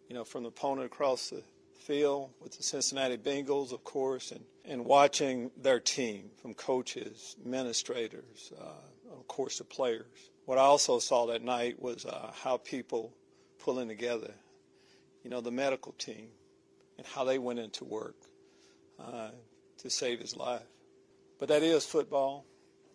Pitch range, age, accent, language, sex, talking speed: 125-145 Hz, 50-69, American, English, male, 155 wpm